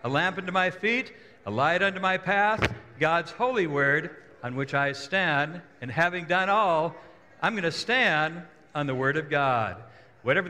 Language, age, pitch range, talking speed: English, 60-79, 135-190 Hz, 175 wpm